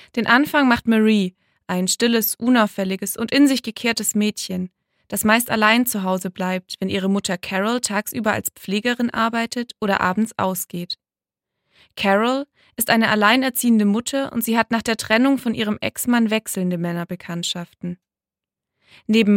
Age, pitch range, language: 20-39, 195-240 Hz, German